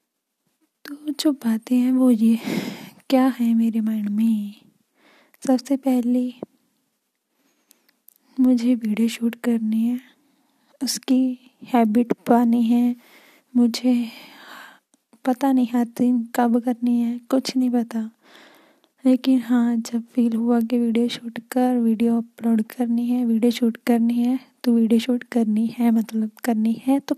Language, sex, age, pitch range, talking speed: Hindi, female, 10-29, 230-270 Hz, 125 wpm